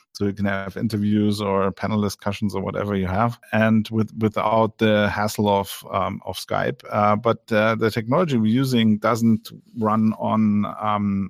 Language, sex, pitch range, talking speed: English, male, 105-120 Hz, 170 wpm